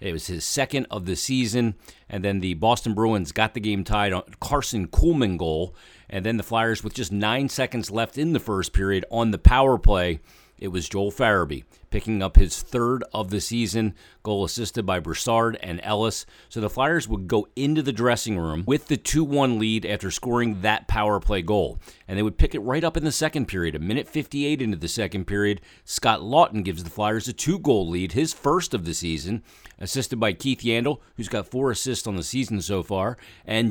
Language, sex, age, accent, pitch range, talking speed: English, male, 40-59, American, 95-115 Hz, 210 wpm